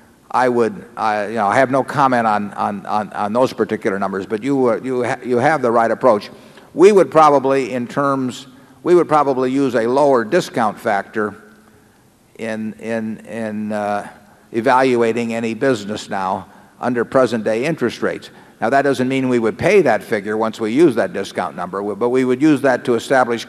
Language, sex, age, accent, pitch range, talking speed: English, male, 50-69, American, 110-130 Hz, 185 wpm